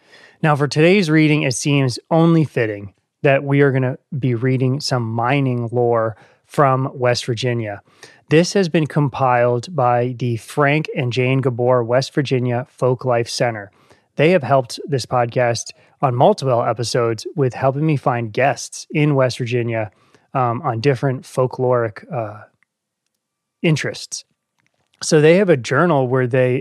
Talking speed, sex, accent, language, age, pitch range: 145 wpm, male, American, English, 20-39, 125-145 Hz